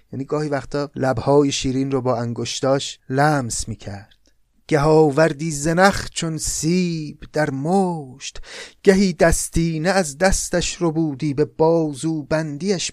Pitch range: 130-170 Hz